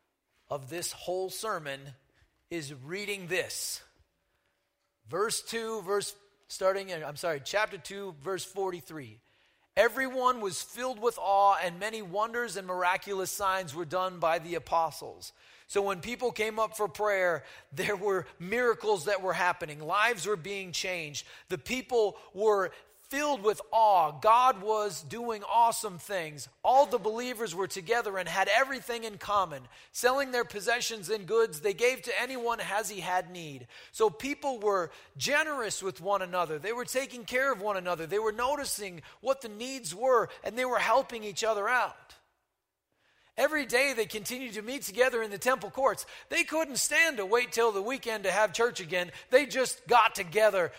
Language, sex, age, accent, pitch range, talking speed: English, male, 30-49, American, 190-245 Hz, 165 wpm